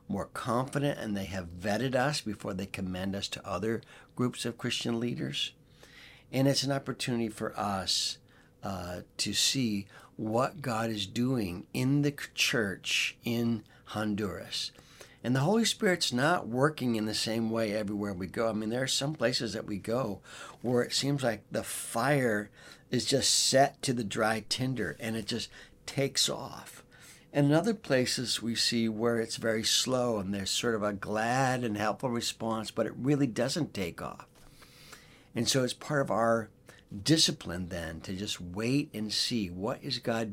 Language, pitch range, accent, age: English, 105-130 Hz, American, 60-79